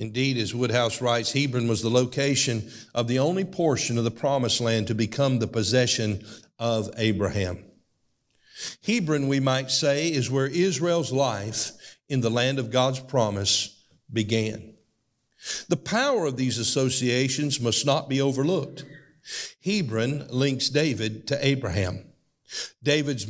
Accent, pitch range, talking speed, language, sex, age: American, 115-160 Hz, 135 wpm, English, male, 50-69